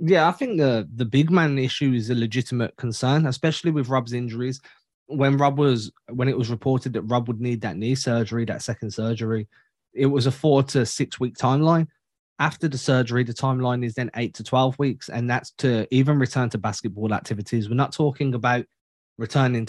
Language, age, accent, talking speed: English, 20-39, British, 200 wpm